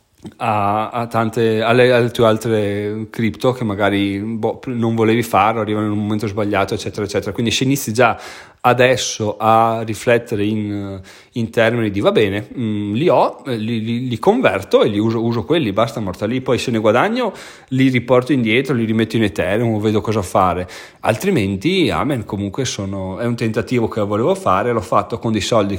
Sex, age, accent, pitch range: male, 30-49, native, 110-125 Hz